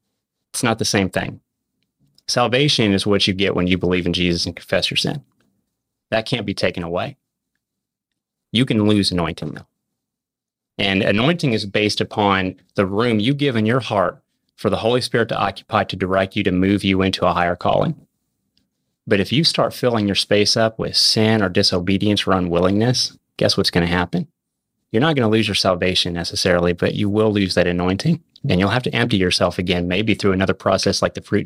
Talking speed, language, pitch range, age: 195 wpm, English, 95-110 Hz, 30-49